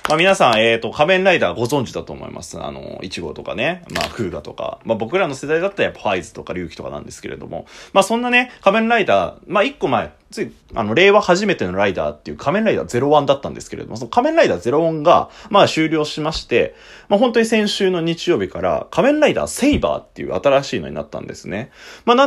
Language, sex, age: Japanese, male, 30-49